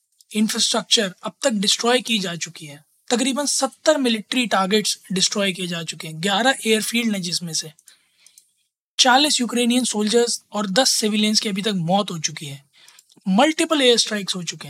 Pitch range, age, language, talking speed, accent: 200-255 Hz, 20-39, Hindi, 65 wpm, native